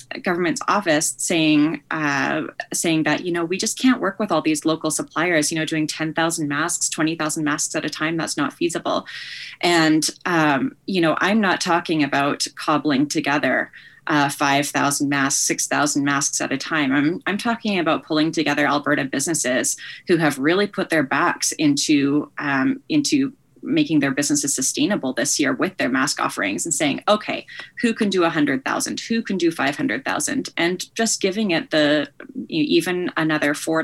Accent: American